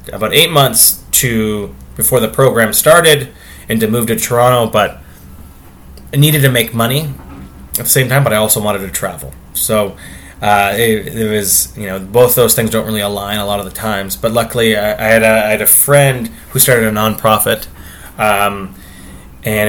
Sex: male